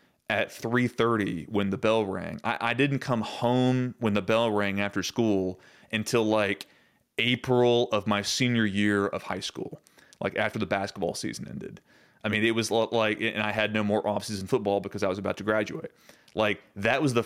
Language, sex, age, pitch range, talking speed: English, male, 30-49, 100-115 Hz, 195 wpm